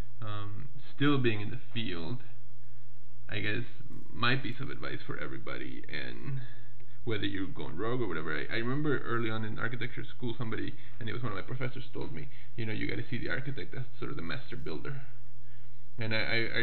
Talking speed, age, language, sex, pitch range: 200 wpm, 20-39, English, male, 115-130 Hz